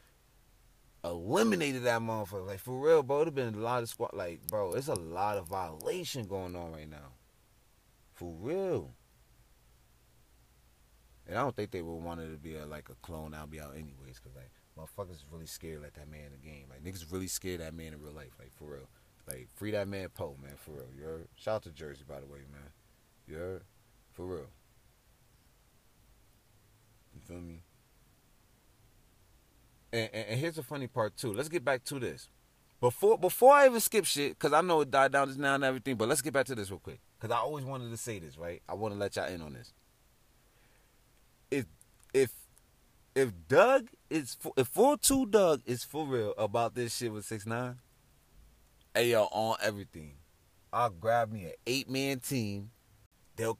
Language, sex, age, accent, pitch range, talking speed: English, male, 30-49, American, 85-130 Hz, 195 wpm